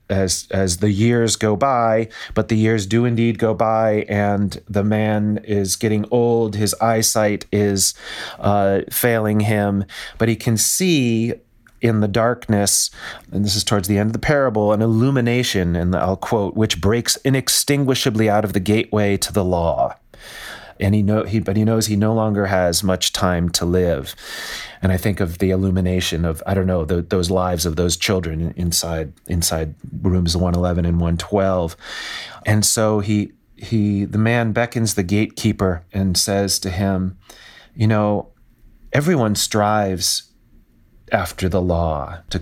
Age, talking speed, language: 30-49, 165 wpm, English